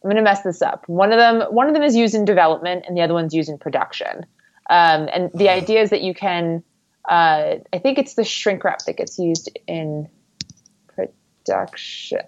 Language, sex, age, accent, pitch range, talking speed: English, female, 20-39, American, 165-200 Hz, 210 wpm